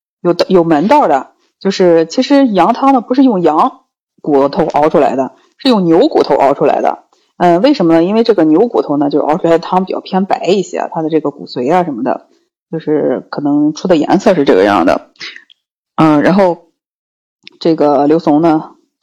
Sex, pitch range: female, 160-225 Hz